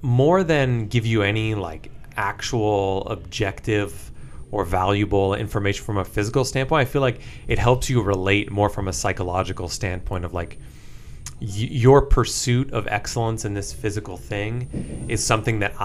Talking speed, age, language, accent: 150 wpm, 30-49, English, American